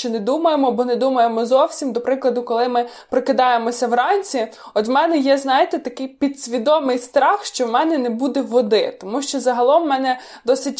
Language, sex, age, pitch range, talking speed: Ukrainian, female, 20-39, 240-285 Hz, 180 wpm